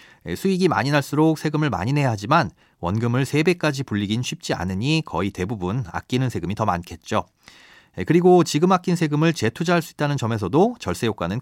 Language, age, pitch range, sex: Korean, 30-49, 110-165 Hz, male